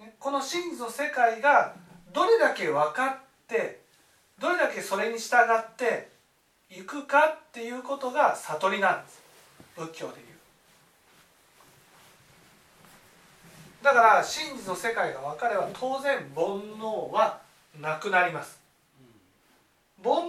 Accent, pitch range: native, 170-265 Hz